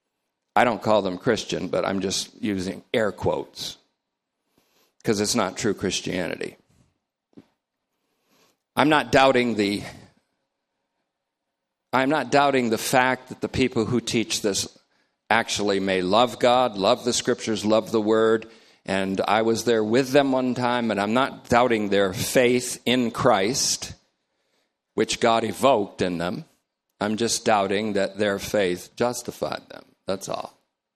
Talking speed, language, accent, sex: 140 wpm, English, American, male